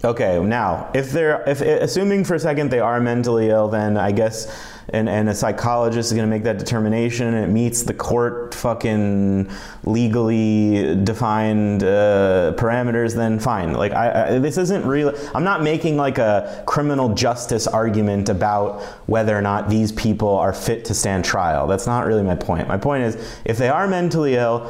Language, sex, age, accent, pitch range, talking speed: English, male, 30-49, American, 100-125 Hz, 175 wpm